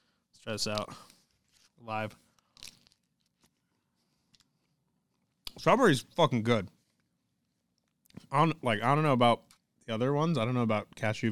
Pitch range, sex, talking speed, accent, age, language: 105-130 Hz, male, 110 wpm, American, 20-39, English